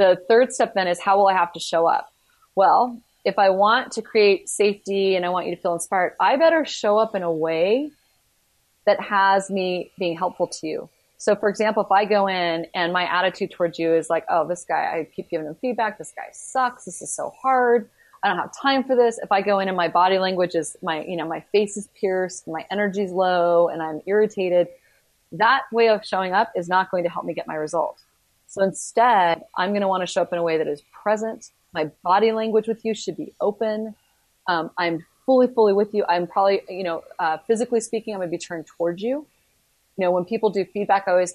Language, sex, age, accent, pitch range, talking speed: English, female, 30-49, American, 175-215 Hz, 235 wpm